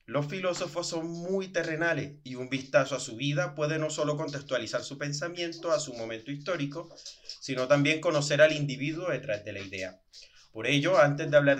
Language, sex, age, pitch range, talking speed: Spanish, male, 30-49, 140-165 Hz, 180 wpm